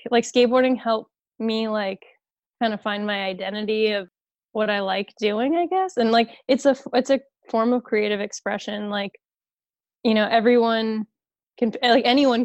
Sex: female